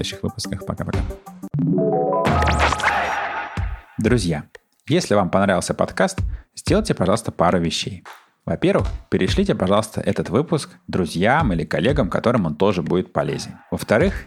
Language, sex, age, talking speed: Russian, male, 30-49, 115 wpm